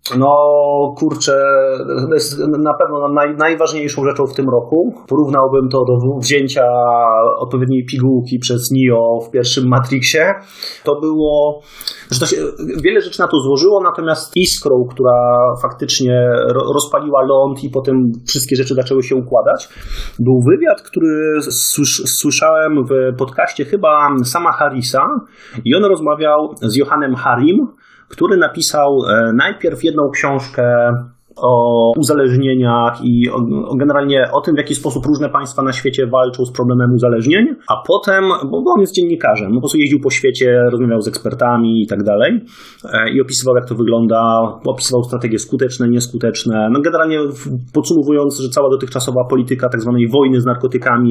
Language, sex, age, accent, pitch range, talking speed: English, male, 30-49, Polish, 125-150 Hz, 140 wpm